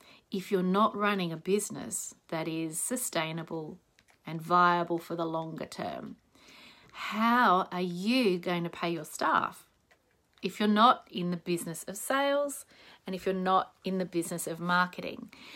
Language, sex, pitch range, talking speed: English, female, 175-230 Hz, 155 wpm